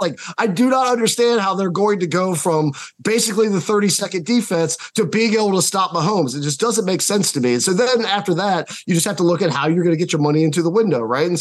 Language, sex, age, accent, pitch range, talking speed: English, male, 20-39, American, 150-190 Hz, 275 wpm